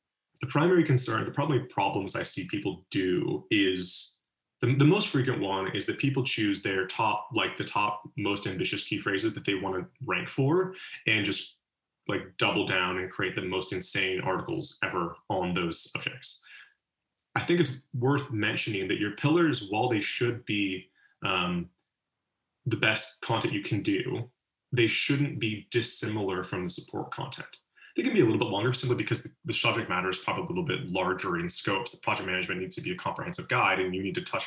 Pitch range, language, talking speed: 95-130 Hz, English, 195 wpm